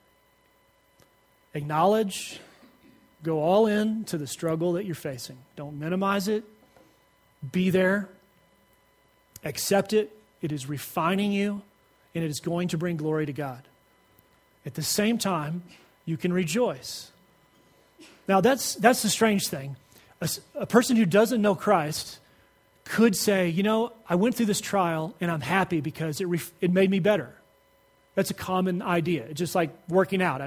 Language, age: English, 30-49